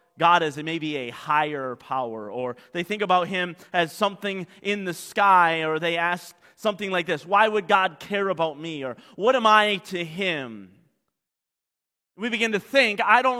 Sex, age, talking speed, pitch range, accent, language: male, 30-49, 180 wpm, 150-200 Hz, American, English